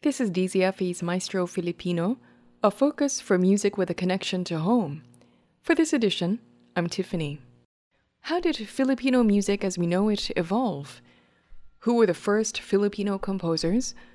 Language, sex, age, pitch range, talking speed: English, female, 20-39, 180-235 Hz, 145 wpm